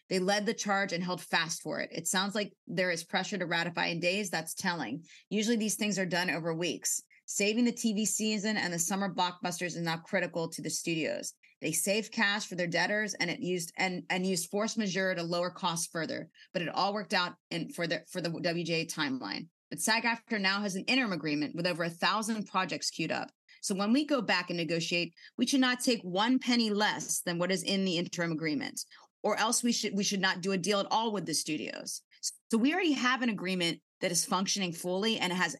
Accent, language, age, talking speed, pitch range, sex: American, English, 30-49, 230 wpm, 175-215 Hz, female